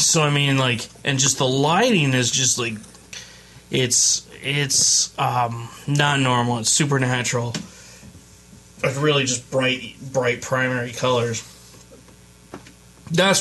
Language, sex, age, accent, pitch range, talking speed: English, male, 20-39, American, 115-145 Hz, 115 wpm